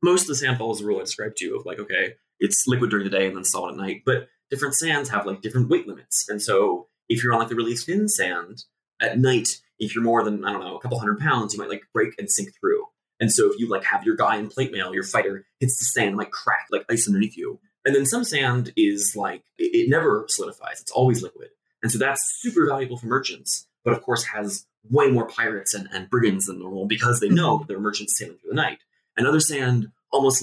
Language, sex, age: English, male, 20-39